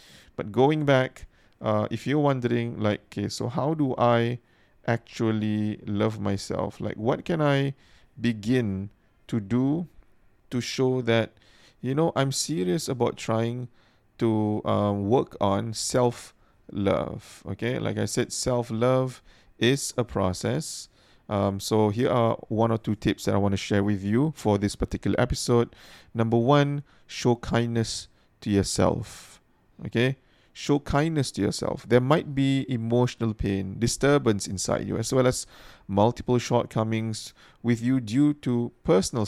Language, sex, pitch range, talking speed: English, male, 105-130 Hz, 145 wpm